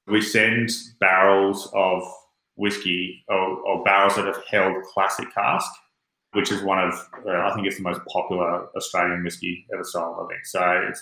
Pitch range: 90-105 Hz